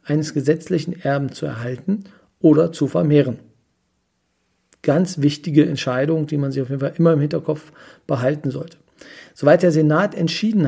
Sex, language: male, German